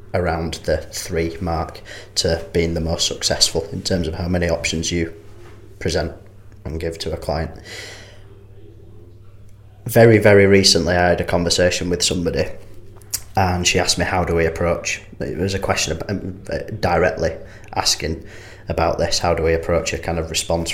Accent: British